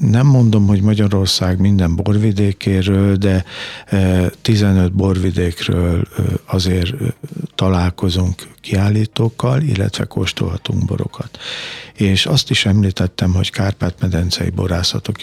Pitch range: 90-110 Hz